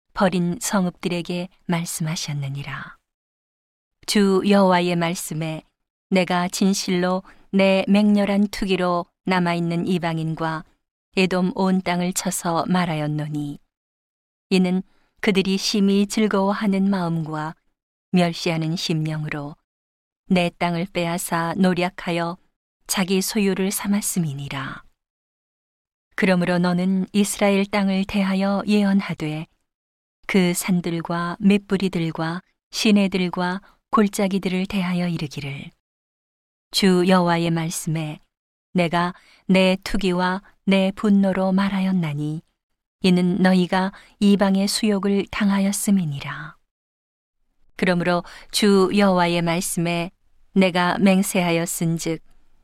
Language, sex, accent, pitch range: Korean, female, native, 170-195 Hz